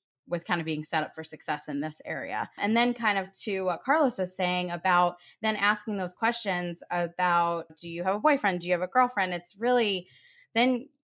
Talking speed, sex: 210 wpm, female